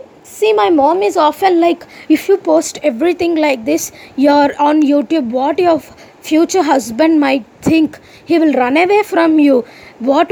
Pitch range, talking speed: 285-360 Hz, 165 wpm